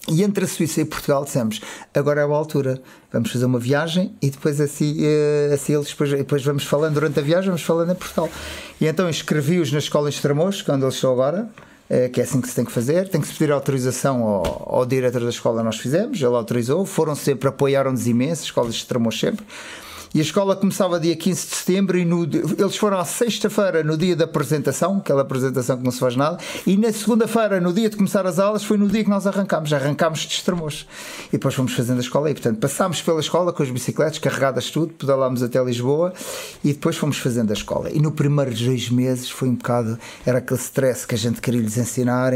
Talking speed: 225 wpm